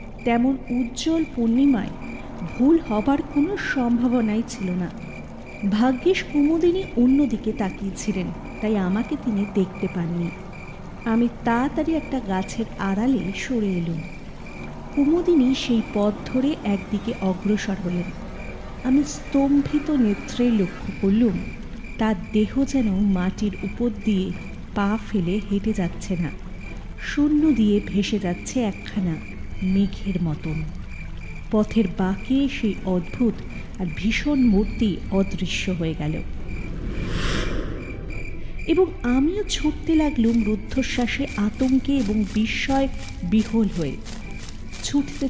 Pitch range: 195-265 Hz